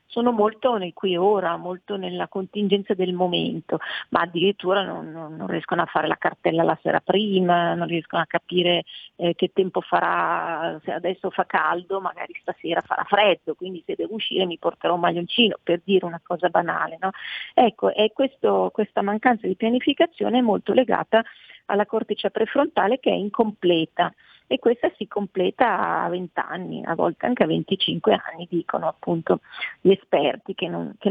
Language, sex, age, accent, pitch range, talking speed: Italian, female, 40-59, native, 175-215 Hz, 170 wpm